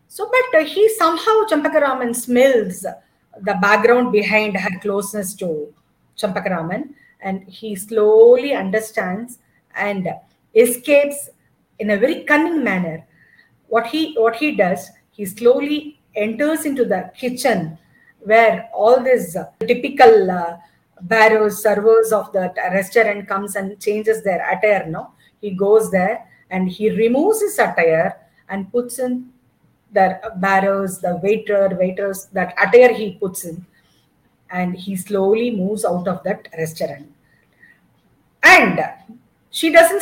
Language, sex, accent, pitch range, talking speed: English, female, Indian, 190-245 Hz, 125 wpm